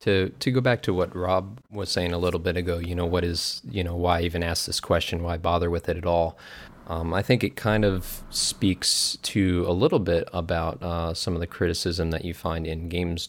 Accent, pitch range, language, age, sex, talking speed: American, 80-90 Hz, English, 20-39, male, 245 wpm